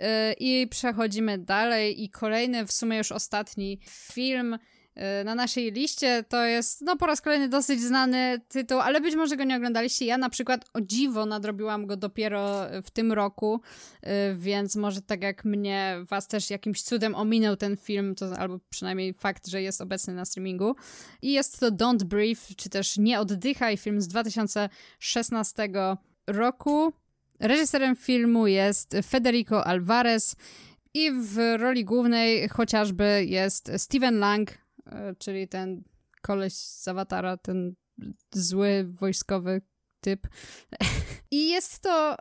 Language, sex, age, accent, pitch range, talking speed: Polish, female, 20-39, native, 200-245 Hz, 140 wpm